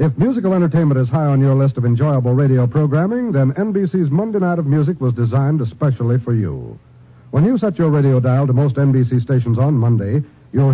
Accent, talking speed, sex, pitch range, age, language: American, 200 wpm, male, 130-175 Hz, 60-79, English